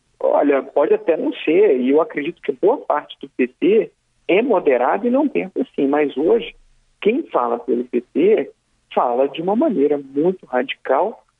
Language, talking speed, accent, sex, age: Portuguese, 165 wpm, Brazilian, male, 50-69